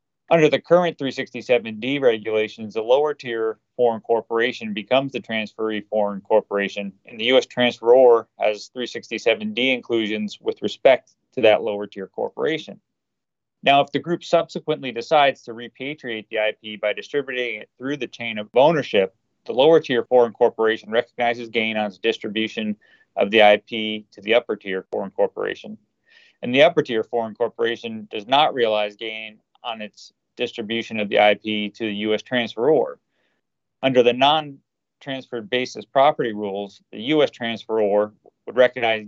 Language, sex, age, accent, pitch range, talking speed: English, male, 30-49, American, 105-130 Hz, 150 wpm